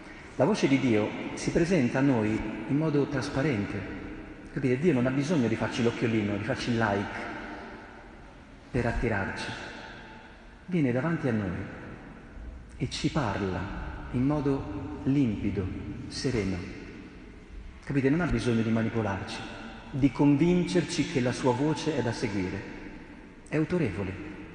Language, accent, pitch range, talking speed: Italian, native, 105-135 Hz, 130 wpm